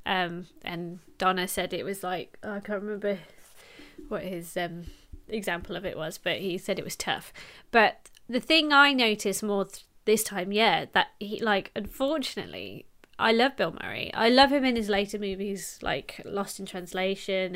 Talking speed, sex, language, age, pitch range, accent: 175 wpm, female, English, 20-39, 200-290 Hz, British